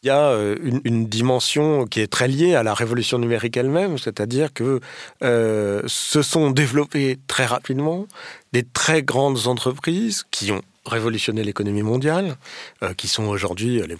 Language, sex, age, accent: French, male, 40-59, French